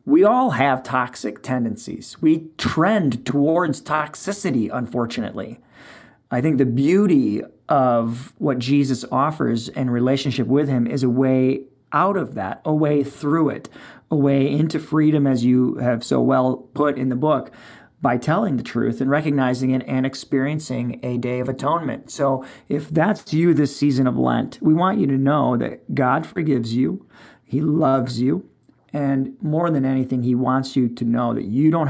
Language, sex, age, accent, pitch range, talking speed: English, male, 40-59, American, 125-145 Hz, 170 wpm